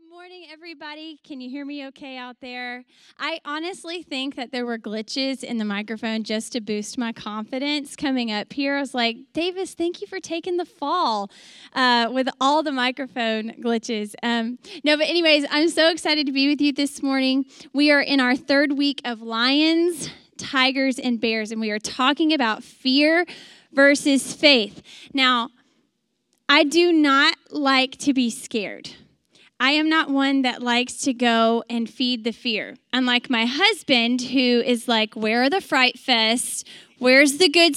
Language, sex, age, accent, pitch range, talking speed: English, female, 10-29, American, 230-290 Hz, 175 wpm